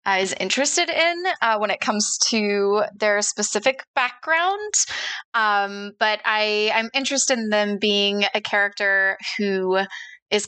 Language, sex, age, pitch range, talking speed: English, female, 20-39, 190-235 Hz, 135 wpm